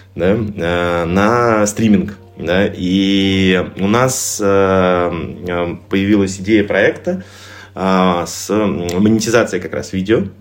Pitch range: 90-100 Hz